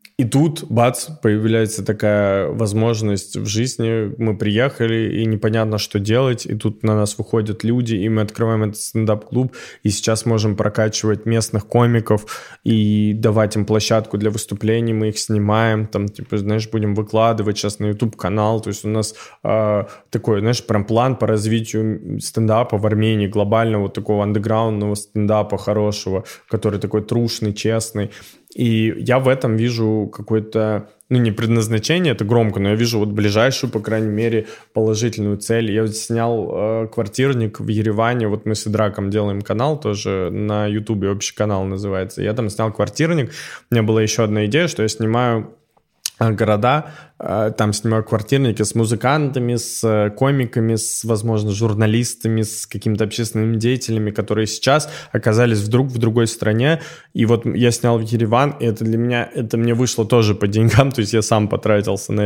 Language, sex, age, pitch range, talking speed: Russian, male, 20-39, 105-115 Hz, 160 wpm